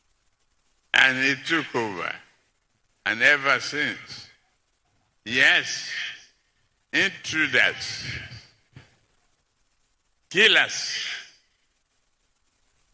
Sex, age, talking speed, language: male, 60-79, 45 wpm, English